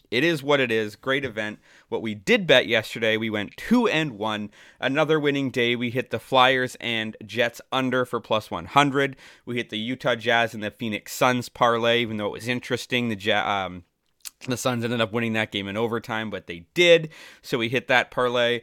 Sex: male